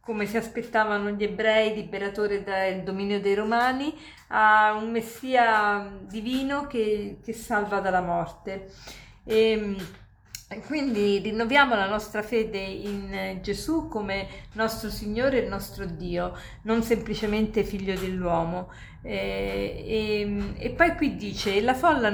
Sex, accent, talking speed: female, native, 115 wpm